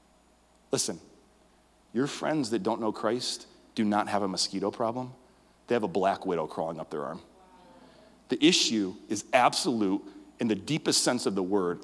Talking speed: 165 wpm